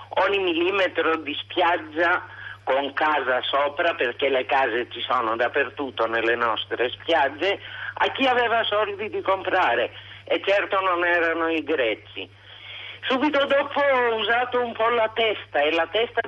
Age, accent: 50-69, native